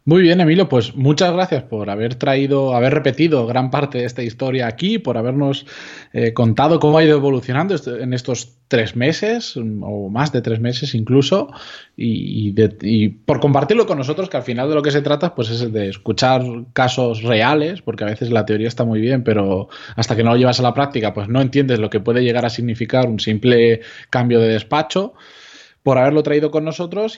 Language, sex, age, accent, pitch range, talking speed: Spanish, male, 20-39, Spanish, 115-145 Hz, 205 wpm